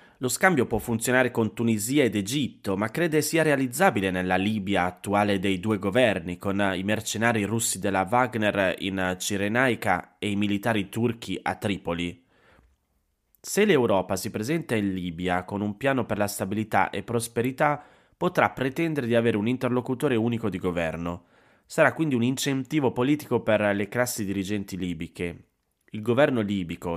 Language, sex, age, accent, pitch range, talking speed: Italian, male, 20-39, native, 95-120 Hz, 150 wpm